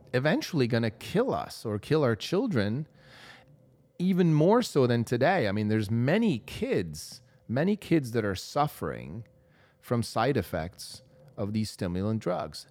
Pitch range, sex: 105-140 Hz, male